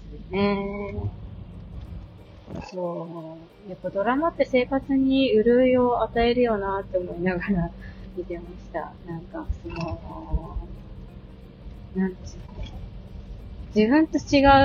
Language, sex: Japanese, female